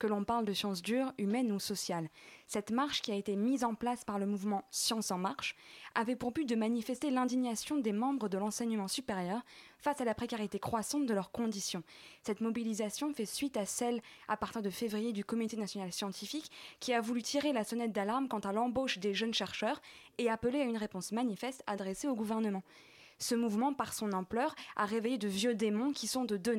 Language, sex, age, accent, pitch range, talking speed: French, female, 20-39, French, 205-255 Hz, 210 wpm